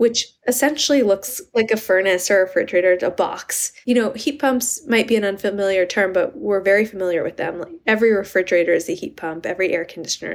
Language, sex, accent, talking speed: English, female, American, 205 wpm